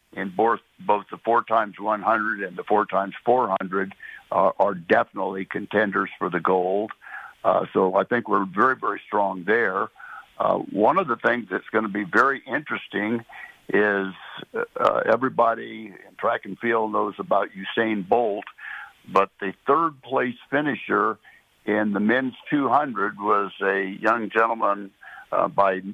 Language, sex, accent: English, male, American